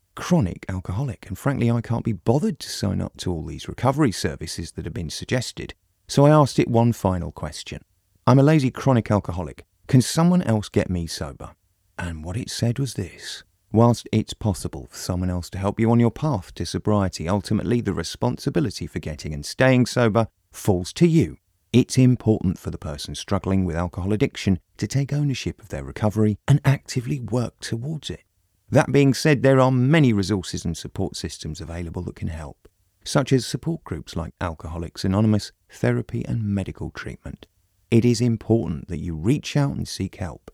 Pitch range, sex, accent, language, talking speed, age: 90-125 Hz, male, British, English, 185 wpm, 30-49